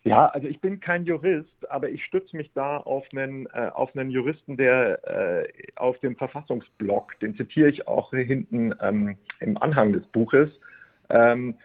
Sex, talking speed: male, 175 wpm